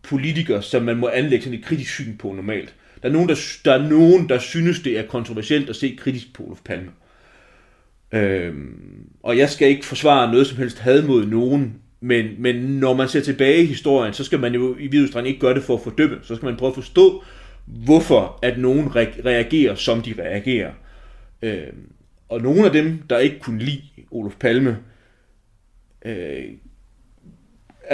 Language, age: Danish, 30-49